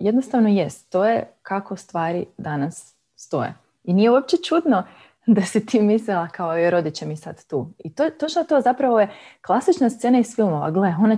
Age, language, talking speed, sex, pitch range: 20-39, Croatian, 190 wpm, female, 170-235 Hz